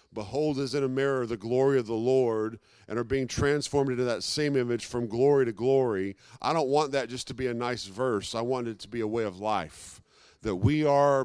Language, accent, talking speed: English, American, 235 wpm